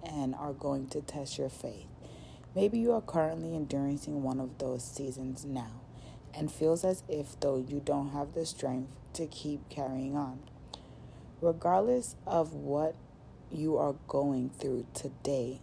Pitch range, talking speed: 130-165 Hz, 150 wpm